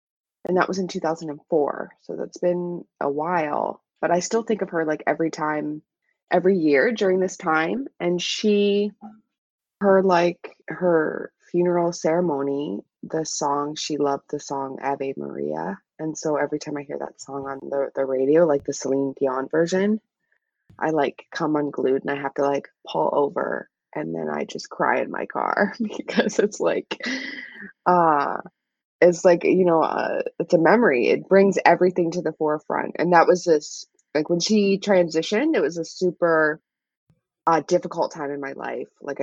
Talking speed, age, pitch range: 170 wpm, 20-39, 145-185 Hz